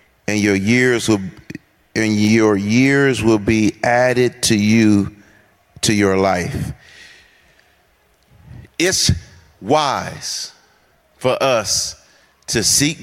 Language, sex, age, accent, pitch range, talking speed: English, male, 40-59, American, 100-120 Hz, 95 wpm